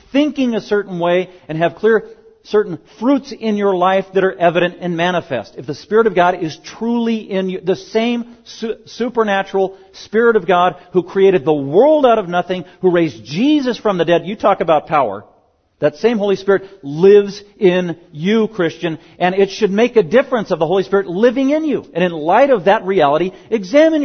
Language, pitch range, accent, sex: English, 140-195 Hz, American, male